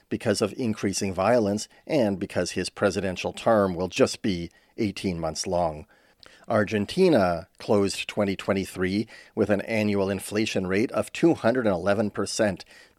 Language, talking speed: English, 115 wpm